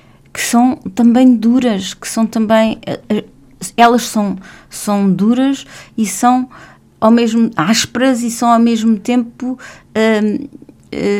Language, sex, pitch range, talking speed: English, female, 190-235 Hz, 125 wpm